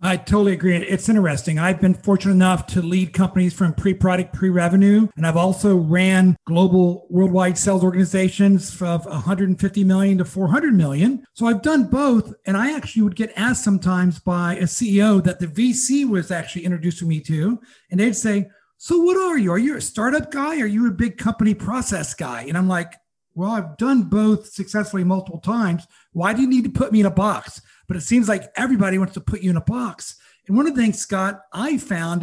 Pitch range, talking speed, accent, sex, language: 180-215 Hz, 205 wpm, American, male, English